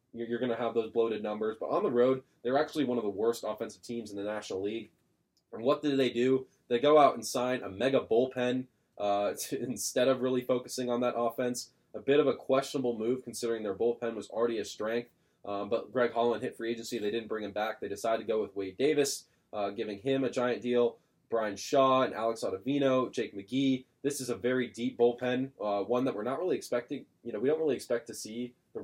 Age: 20-39